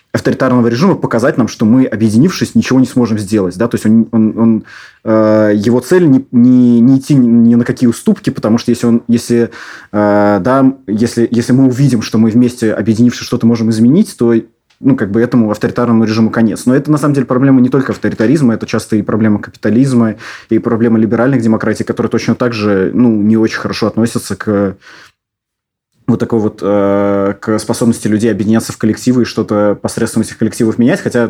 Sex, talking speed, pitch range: male, 185 wpm, 105-120 Hz